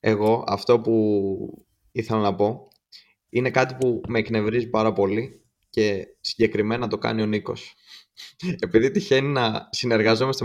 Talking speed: 130 wpm